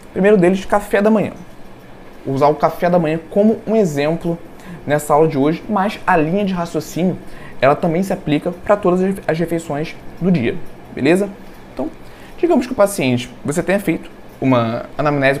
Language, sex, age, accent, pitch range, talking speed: Portuguese, male, 20-39, Brazilian, 140-190 Hz, 170 wpm